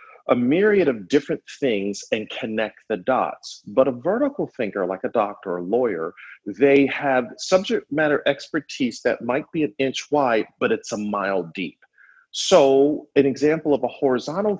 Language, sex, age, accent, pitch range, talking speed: English, male, 40-59, American, 110-170 Hz, 170 wpm